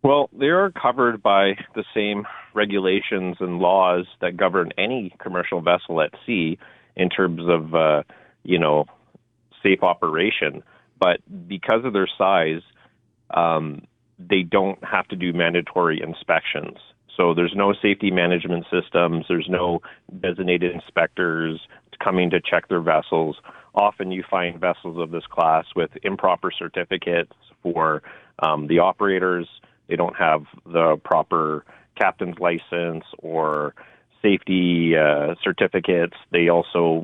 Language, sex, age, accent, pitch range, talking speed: English, male, 30-49, American, 80-90 Hz, 130 wpm